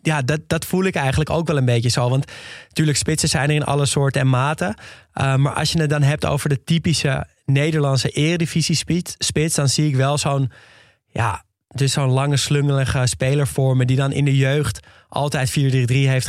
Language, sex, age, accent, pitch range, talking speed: Dutch, male, 20-39, Dutch, 125-150 Hz, 200 wpm